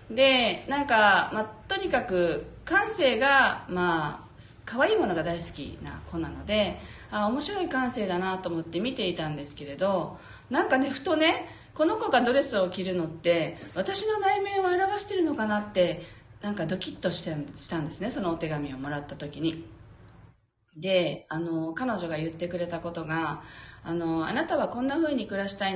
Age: 40-59